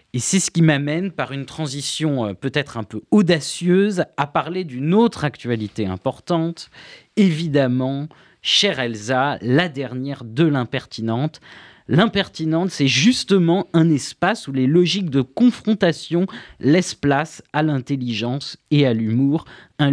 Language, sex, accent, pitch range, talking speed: French, male, French, 130-165 Hz, 130 wpm